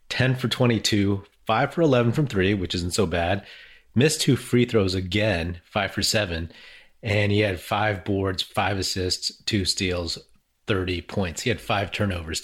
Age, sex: 30-49, male